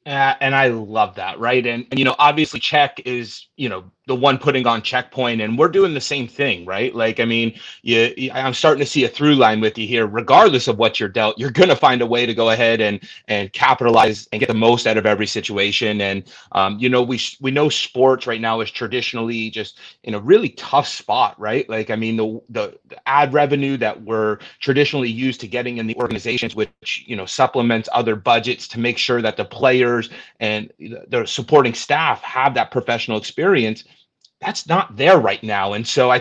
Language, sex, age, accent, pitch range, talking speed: English, male, 30-49, American, 110-140 Hz, 215 wpm